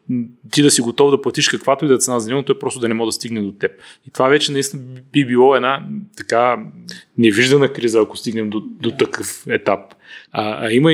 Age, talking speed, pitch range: 30-49, 220 wpm, 115-140 Hz